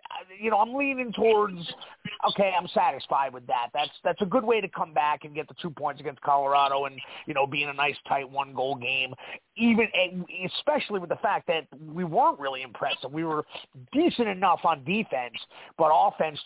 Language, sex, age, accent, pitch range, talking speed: English, male, 30-49, American, 130-195 Hz, 195 wpm